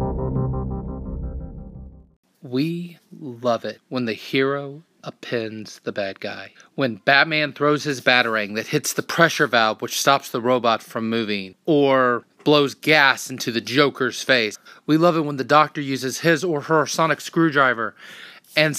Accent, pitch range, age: American, 120-165 Hz, 30-49